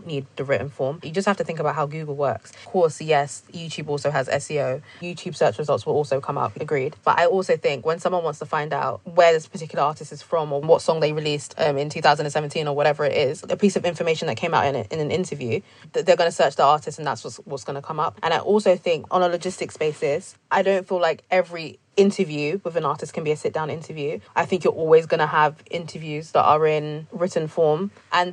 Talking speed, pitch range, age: 250 wpm, 150-185 Hz, 20-39